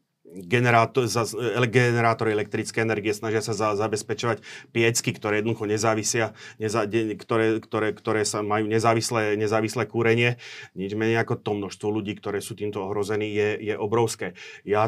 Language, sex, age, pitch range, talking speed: Slovak, male, 30-49, 105-115 Hz, 140 wpm